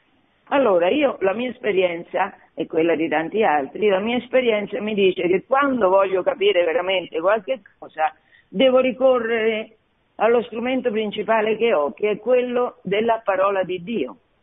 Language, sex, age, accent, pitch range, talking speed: Italian, female, 50-69, native, 195-255 Hz, 150 wpm